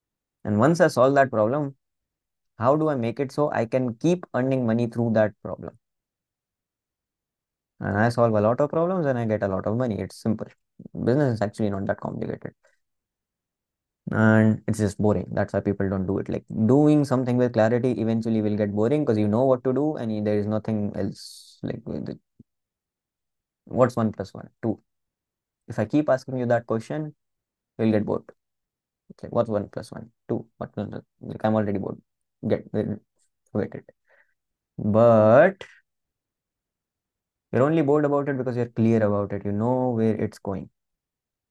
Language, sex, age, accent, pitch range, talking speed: English, male, 20-39, Indian, 105-125 Hz, 170 wpm